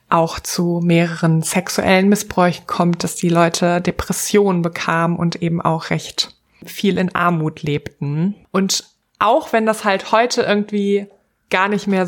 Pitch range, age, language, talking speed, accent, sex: 170-205 Hz, 20-39, German, 145 wpm, German, female